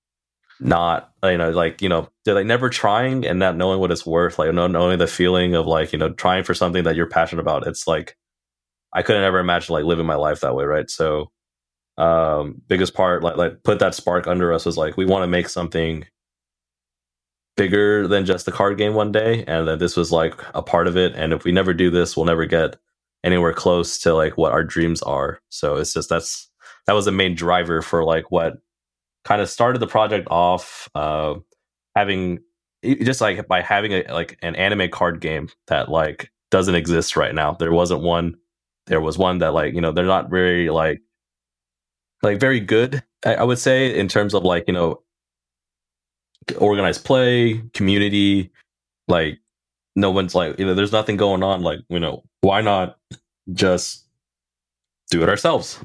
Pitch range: 80-95 Hz